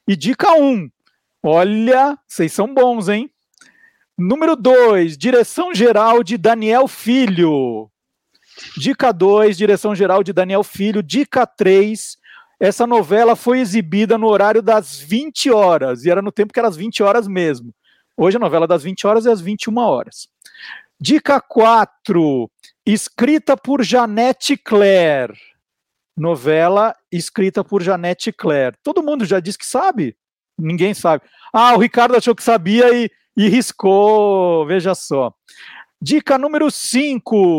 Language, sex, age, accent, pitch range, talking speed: Portuguese, male, 50-69, Brazilian, 185-245 Hz, 140 wpm